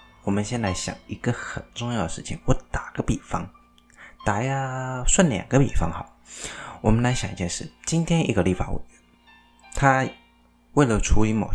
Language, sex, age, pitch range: Chinese, male, 20-39, 85-130 Hz